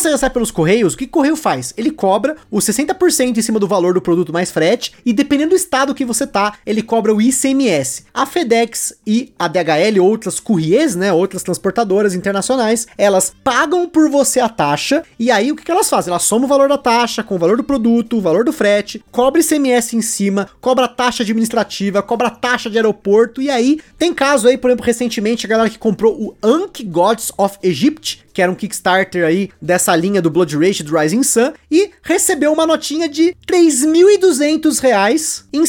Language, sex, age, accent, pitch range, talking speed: Portuguese, male, 20-39, Brazilian, 200-275 Hz, 200 wpm